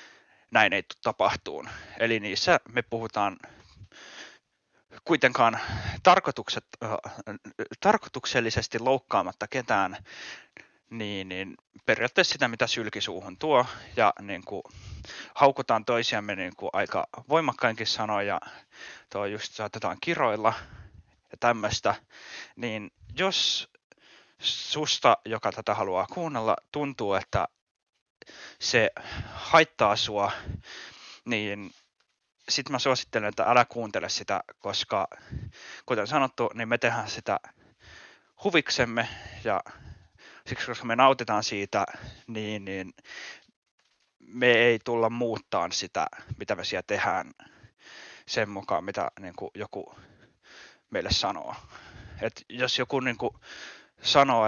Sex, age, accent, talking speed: male, 20-39, native, 100 wpm